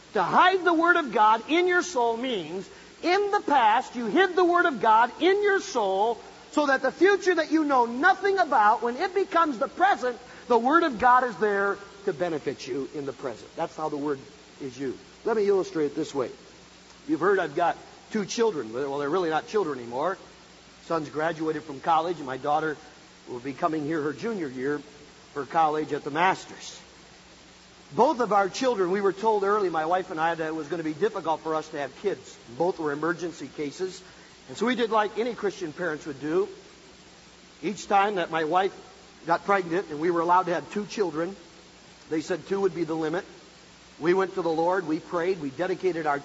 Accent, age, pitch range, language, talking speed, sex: American, 50-69, 165-255 Hz, English, 210 wpm, male